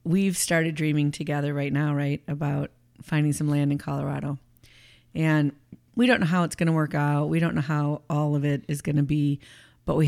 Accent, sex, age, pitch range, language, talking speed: American, female, 40-59, 145-165 Hz, English, 215 wpm